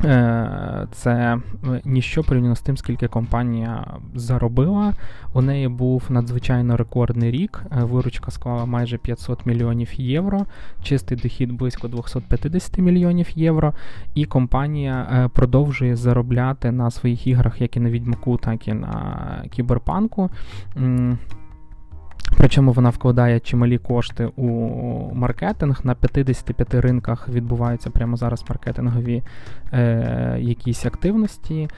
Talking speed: 110 wpm